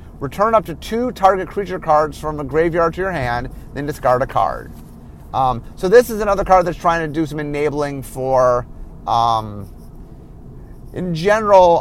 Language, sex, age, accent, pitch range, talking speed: English, male, 30-49, American, 125-170 Hz, 170 wpm